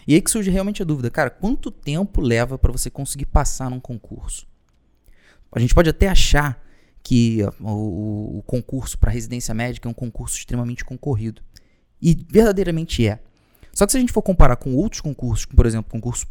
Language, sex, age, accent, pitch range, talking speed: Portuguese, male, 20-39, Brazilian, 115-155 Hz, 180 wpm